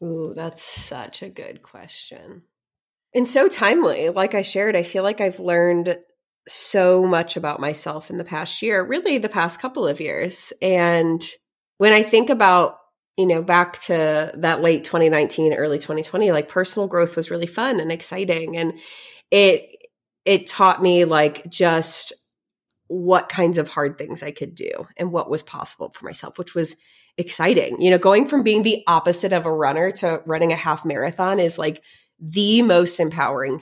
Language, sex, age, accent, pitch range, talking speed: English, female, 30-49, American, 165-195 Hz, 175 wpm